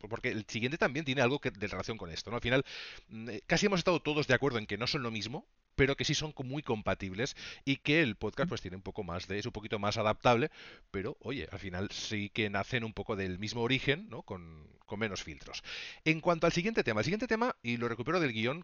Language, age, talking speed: Spanish, 30-49, 245 wpm